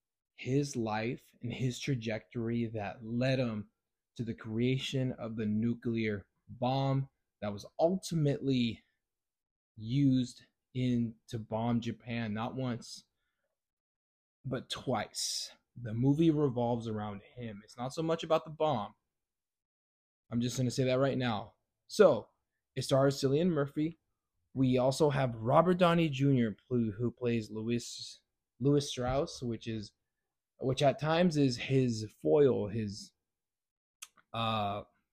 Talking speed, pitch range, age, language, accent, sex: 125 wpm, 110-140 Hz, 20-39, English, American, male